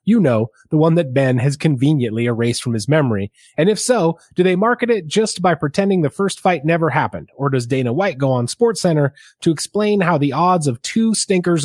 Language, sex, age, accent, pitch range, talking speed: English, male, 30-49, American, 125-160 Hz, 215 wpm